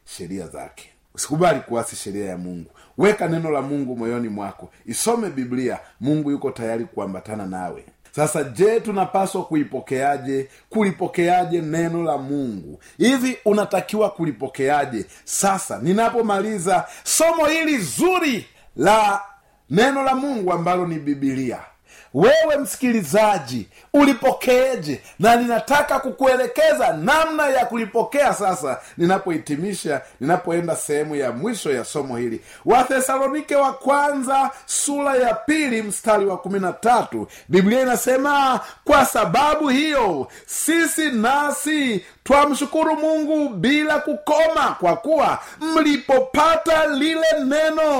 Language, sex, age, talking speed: Swahili, male, 40-59, 100 wpm